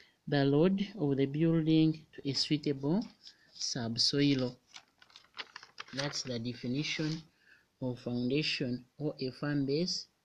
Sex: male